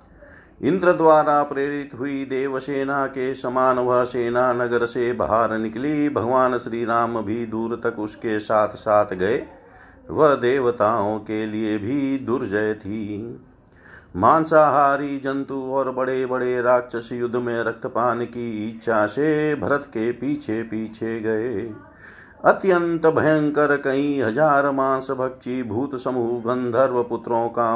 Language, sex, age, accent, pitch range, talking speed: Hindi, male, 50-69, native, 110-135 Hz, 130 wpm